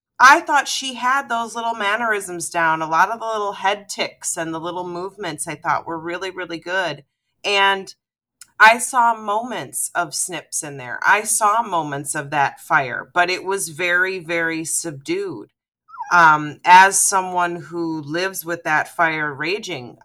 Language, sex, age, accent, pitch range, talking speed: English, female, 30-49, American, 160-220 Hz, 160 wpm